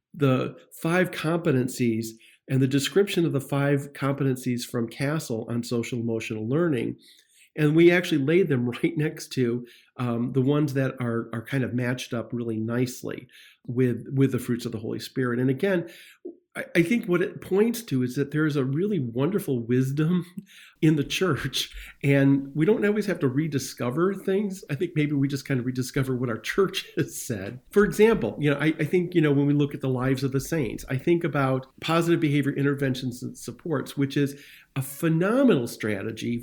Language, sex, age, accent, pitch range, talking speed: English, male, 40-59, American, 125-155 Hz, 190 wpm